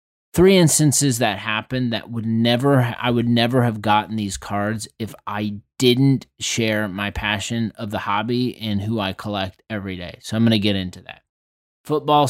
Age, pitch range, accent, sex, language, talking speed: 20-39, 105-130 Hz, American, male, English, 180 wpm